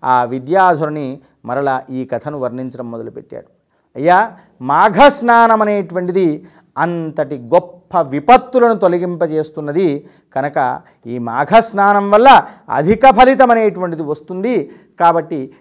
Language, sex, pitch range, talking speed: Telugu, male, 150-205 Hz, 90 wpm